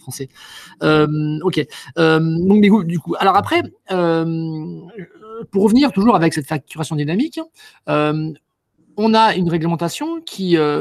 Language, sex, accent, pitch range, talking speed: French, male, French, 155-220 Hz, 140 wpm